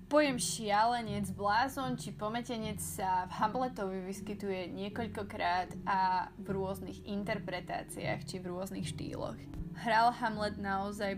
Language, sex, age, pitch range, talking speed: Slovak, female, 20-39, 180-205 Hz, 115 wpm